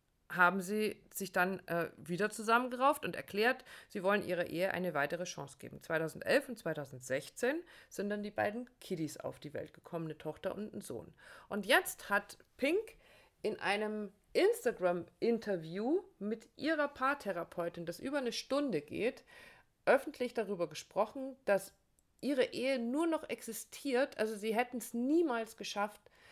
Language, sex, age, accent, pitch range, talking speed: German, female, 50-69, German, 175-230 Hz, 145 wpm